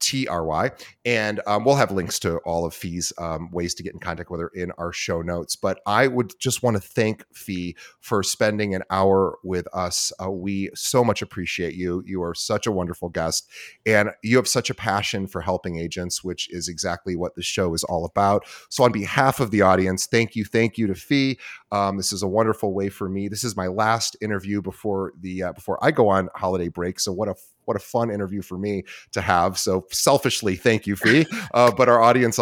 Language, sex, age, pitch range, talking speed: English, male, 30-49, 90-115 Hz, 220 wpm